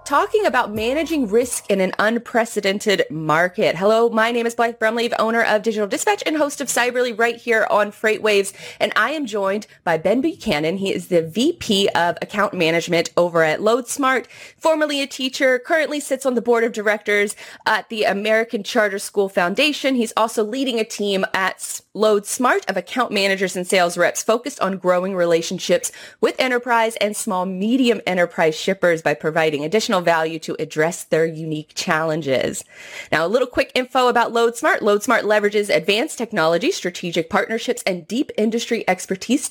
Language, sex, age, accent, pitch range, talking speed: English, female, 20-39, American, 185-240 Hz, 165 wpm